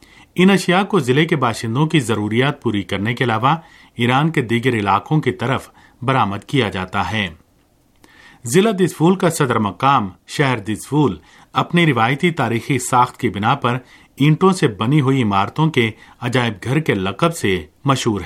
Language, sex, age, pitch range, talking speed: Urdu, male, 40-59, 110-150 Hz, 160 wpm